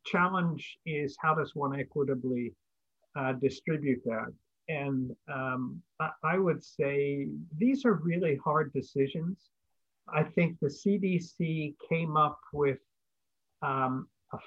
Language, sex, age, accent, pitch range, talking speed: English, male, 50-69, American, 140-175 Hz, 120 wpm